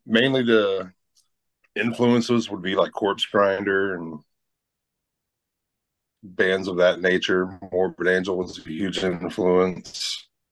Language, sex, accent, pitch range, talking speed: English, male, American, 90-110 Hz, 110 wpm